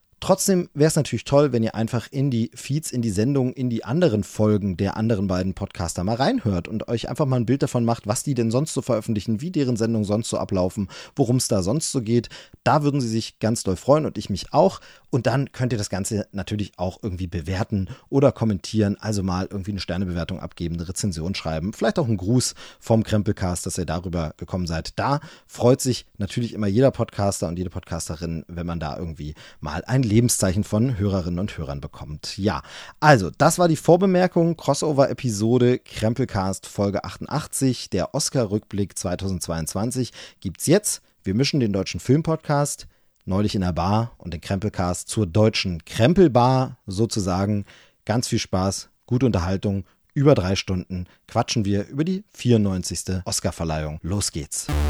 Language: German